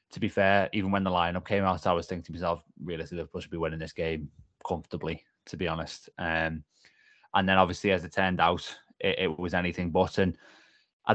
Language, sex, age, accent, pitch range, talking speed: English, male, 20-39, British, 85-100 Hz, 215 wpm